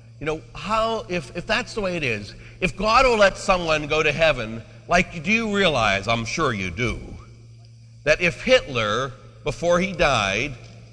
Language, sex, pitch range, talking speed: English, male, 115-175 Hz, 175 wpm